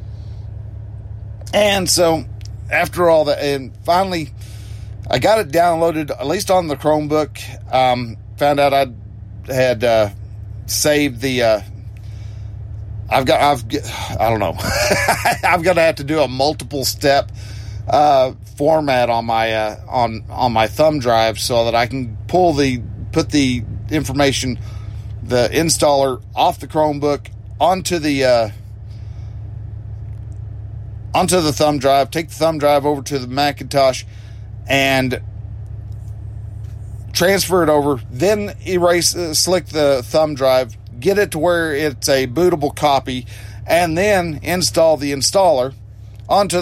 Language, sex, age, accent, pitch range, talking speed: English, male, 40-59, American, 105-150 Hz, 135 wpm